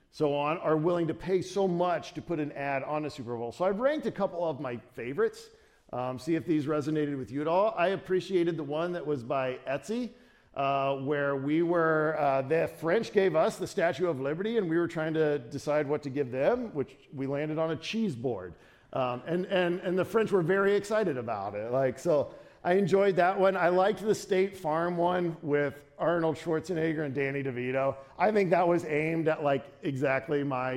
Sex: male